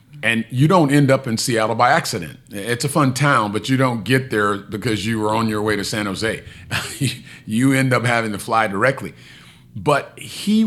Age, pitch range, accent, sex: 40-59, 110-130 Hz, American, male